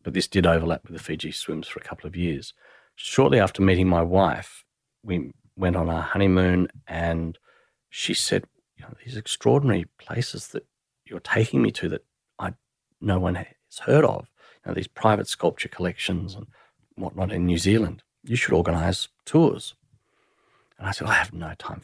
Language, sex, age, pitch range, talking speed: English, male, 40-59, 85-95 Hz, 180 wpm